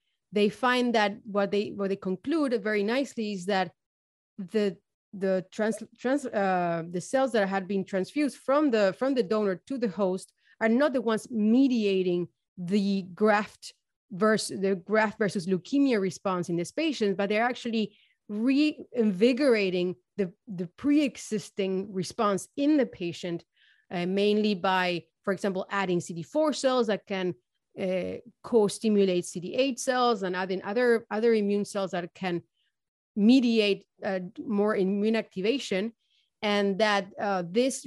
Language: English